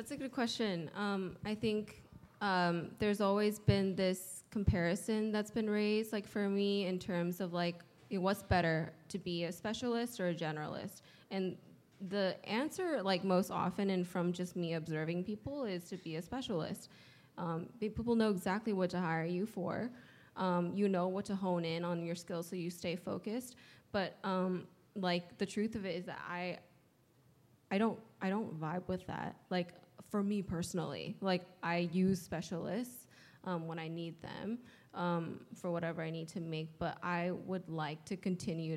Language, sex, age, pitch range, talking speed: English, female, 10-29, 170-205 Hz, 180 wpm